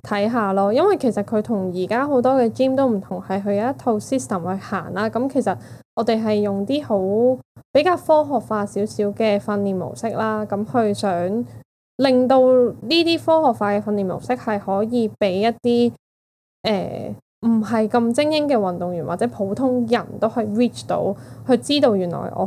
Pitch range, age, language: 200-240 Hz, 10-29, Chinese